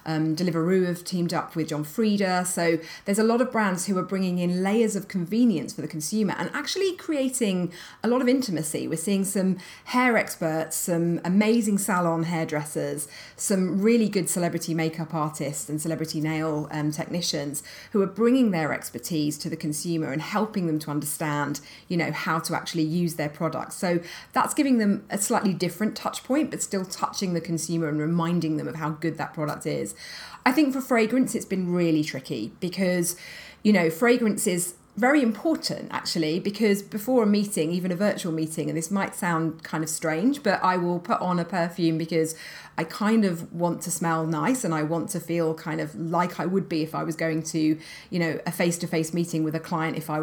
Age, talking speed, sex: 30-49, 200 wpm, female